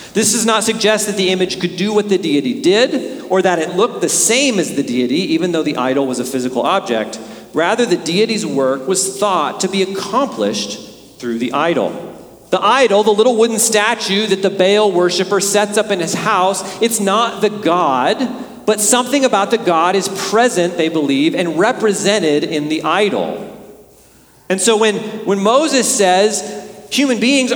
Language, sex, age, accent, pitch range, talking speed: English, male, 40-59, American, 180-235 Hz, 180 wpm